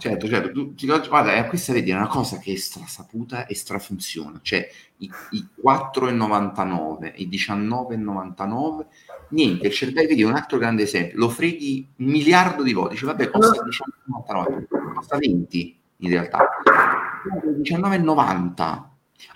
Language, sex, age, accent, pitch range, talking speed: Italian, male, 30-49, native, 95-140 Hz, 125 wpm